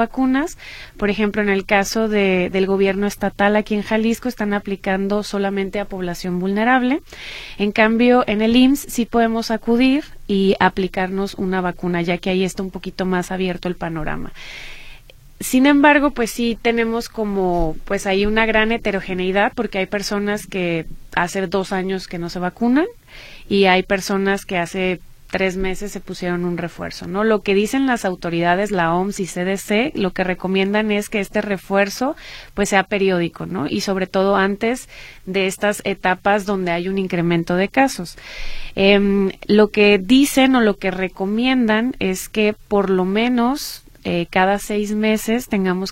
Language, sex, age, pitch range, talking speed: Spanish, female, 30-49, 185-220 Hz, 165 wpm